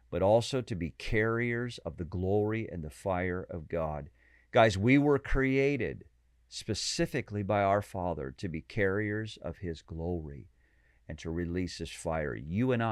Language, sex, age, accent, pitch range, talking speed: English, male, 50-69, American, 85-120 Hz, 160 wpm